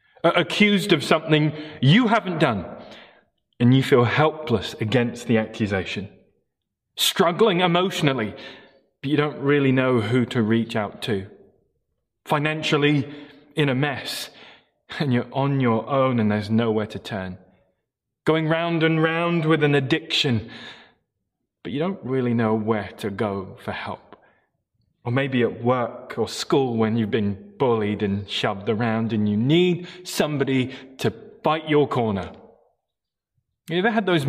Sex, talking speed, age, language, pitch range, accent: male, 140 wpm, 20-39, English, 115-160 Hz, British